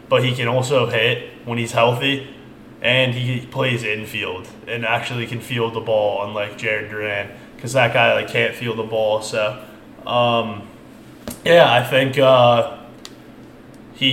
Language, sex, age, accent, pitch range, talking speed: English, male, 20-39, American, 115-135 Hz, 155 wpm